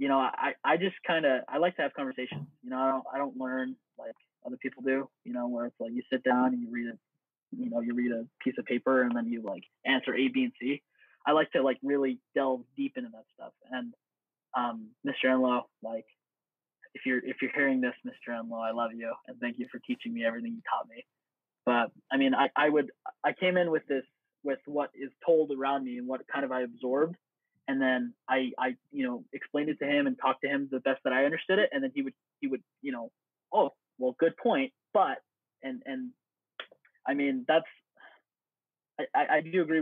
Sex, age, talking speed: male, 20-39, 230 wpm